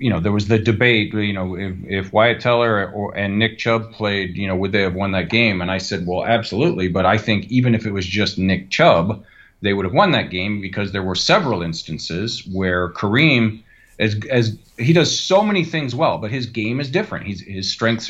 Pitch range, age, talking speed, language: 105-135 Hz, 40-59, 220 wpm, English